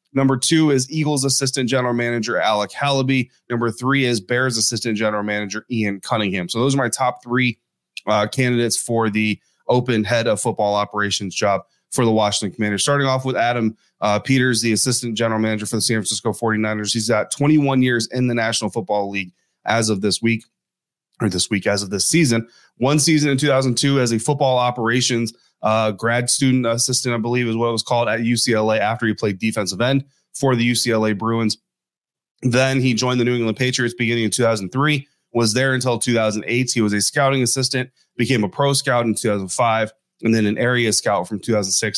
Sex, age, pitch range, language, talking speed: male, 30-49, 110-130 Hz, English, 195 wpm